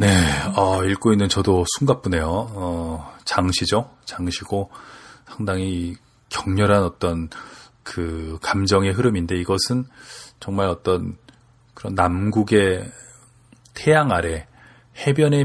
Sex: male